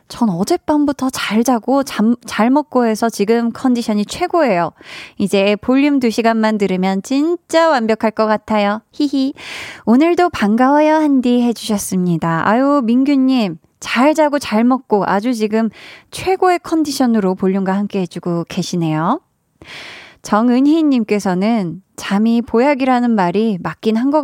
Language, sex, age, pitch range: Korean, female, 20-39, 195-260 Hz